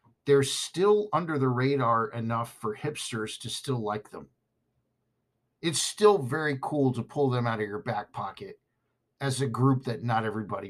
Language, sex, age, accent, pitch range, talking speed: English, male, 50-69, American, 115-140 Hz, 170 wpm